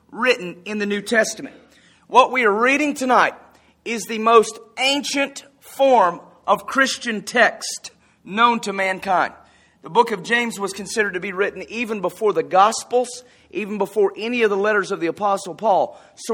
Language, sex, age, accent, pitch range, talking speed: English, male, 40-59, American, 190-245 Hz, 165 wpm